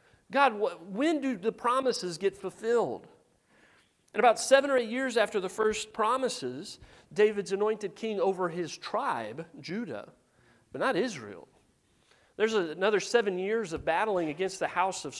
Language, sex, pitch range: English, male, 165-225 Hz